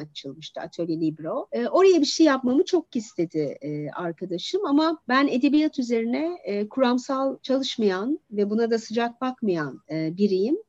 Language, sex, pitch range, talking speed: Turkish, female, 195-300 Hz, 145 wpm